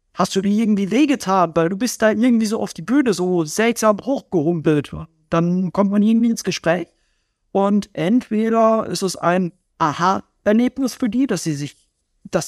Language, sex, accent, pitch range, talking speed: German, male, German, 155-210 Hz, 175 wpm